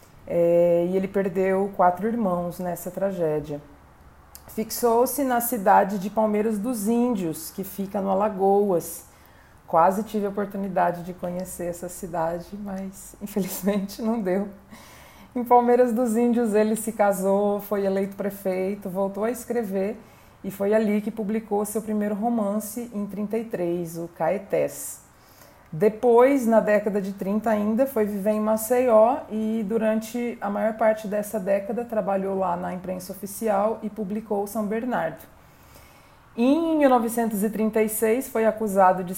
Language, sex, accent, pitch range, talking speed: Portuguese, female, Brazilian, 185-220 Hz, 135 wpm